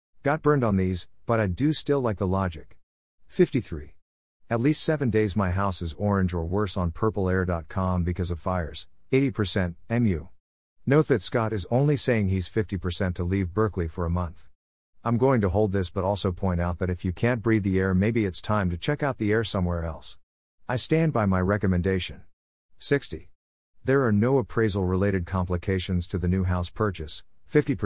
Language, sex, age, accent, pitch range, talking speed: English, male, 50-69, American, 85-110 Hz, 185 wpm